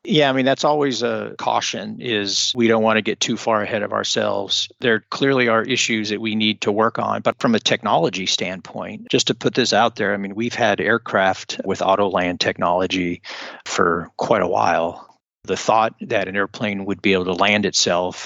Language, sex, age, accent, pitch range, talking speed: English, male, 40-59, American, 95-115 Hz, 205 wpm